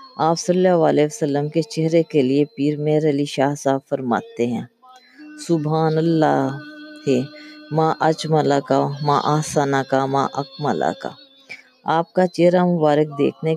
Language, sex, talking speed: Urdu, female, 140 wpm